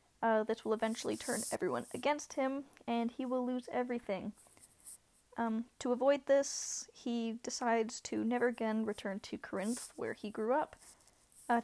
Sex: female